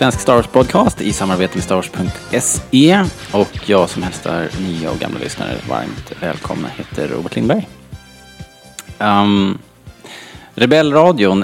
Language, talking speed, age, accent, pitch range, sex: Swedish, 115 wpm, 30-49, Norwegian, 90-110 Hz, male